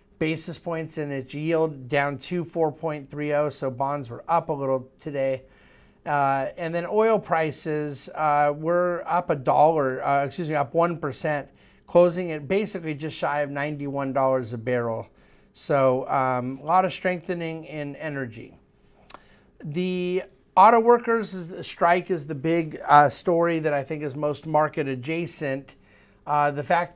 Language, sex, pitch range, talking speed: English, male, 135-160 Hz, 140 wpm